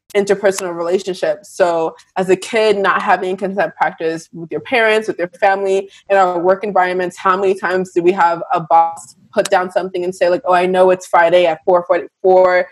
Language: English